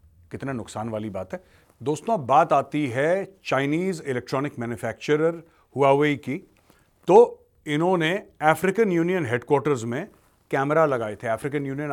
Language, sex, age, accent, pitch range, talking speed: Hindi, male, 40-59, native, 130-175 Hz, 125 wpm